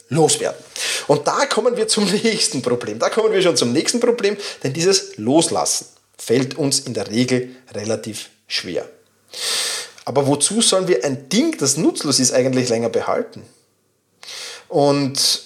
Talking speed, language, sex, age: 150 wpm, German, male, 30-49